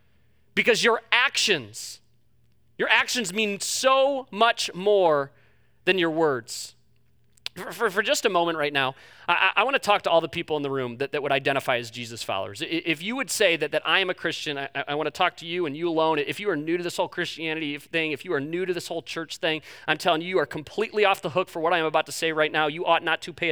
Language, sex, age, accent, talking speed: English, male, 30-49, American, 250 wpm